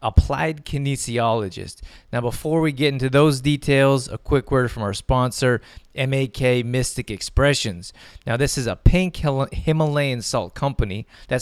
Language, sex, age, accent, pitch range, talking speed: English, male, 30-49, American, 120-145 Hz, 140 wpm